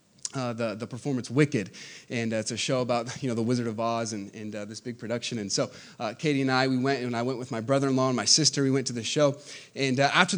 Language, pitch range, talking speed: English, 135-180 Hz, 280 wpm